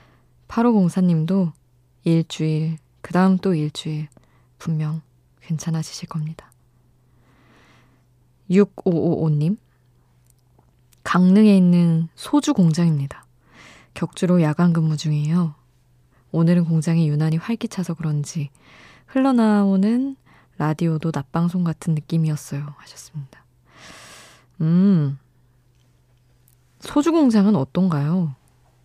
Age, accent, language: 20-39, native, Korean